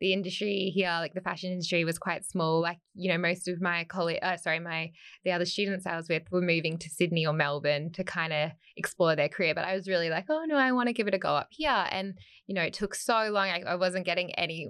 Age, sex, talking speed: 10-29, female, 270 wpm